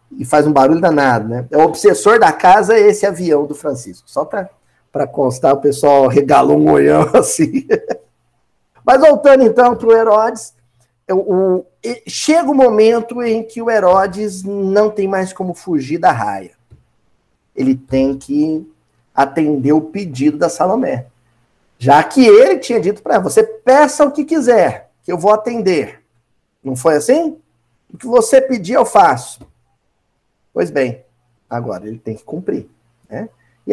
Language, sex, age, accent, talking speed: Portuguese, male, 50-69, Brazilian, 160 wpm